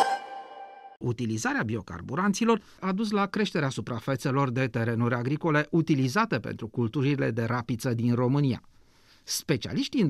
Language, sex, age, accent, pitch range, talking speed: Romanian, male, 40-59, native, 125-200 Hz, 115 wpm